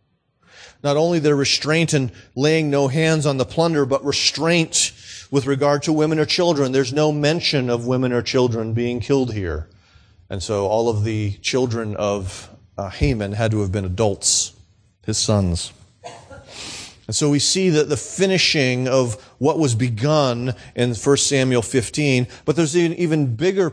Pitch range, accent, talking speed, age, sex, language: 110-150 Hz, American, 160 wpm, 40-59, male, English